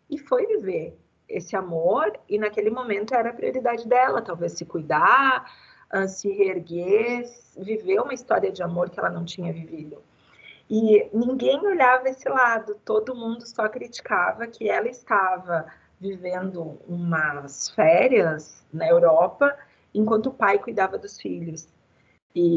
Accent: Brazilian